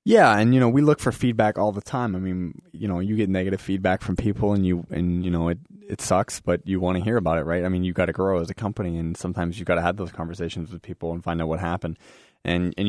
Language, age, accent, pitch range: English, 20-39, American, 85-105 Hz